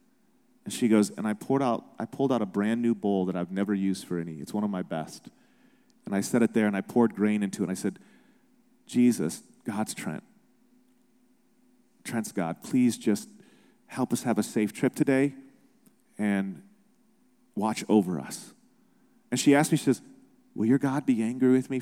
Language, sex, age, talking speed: English, male, 40-59, 195 wpm